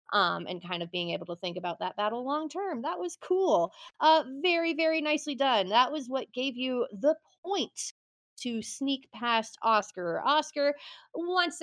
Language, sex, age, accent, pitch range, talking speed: English, female, 30-49, American, 190-295 Hz, 175 wpm